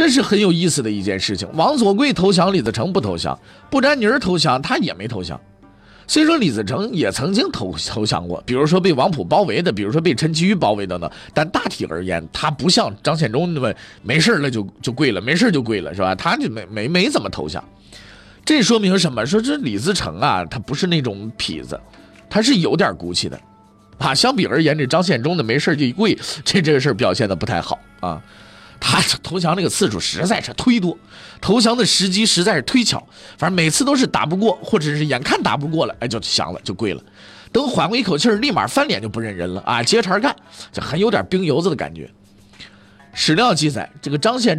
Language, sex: Chinese, male